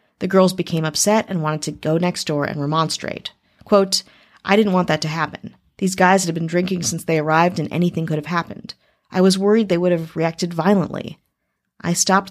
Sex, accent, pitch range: female, American, 155-200 Hz